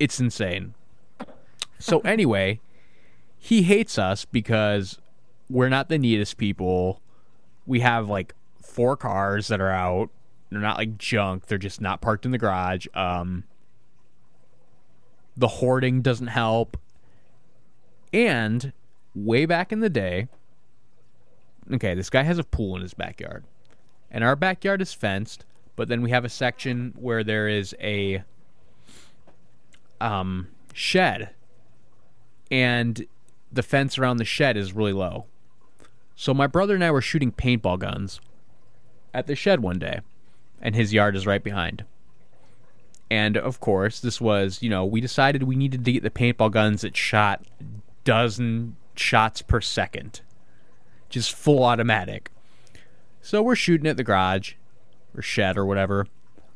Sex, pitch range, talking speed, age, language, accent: male, 100-125 Hz, 140 wpm, 20-39, English, American